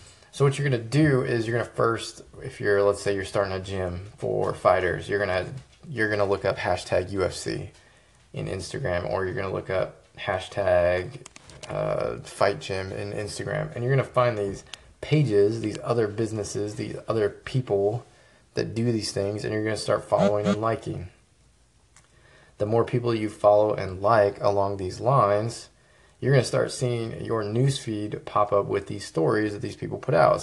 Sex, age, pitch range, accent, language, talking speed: male, 20-39, 100-120 Hz, American, English, 190 wpm